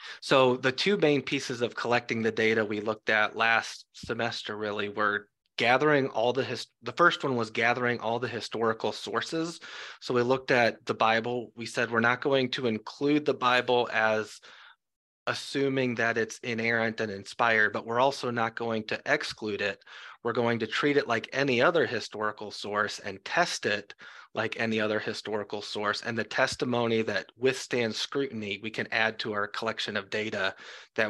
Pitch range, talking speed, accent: 105-125 Hz, 175 wpm, American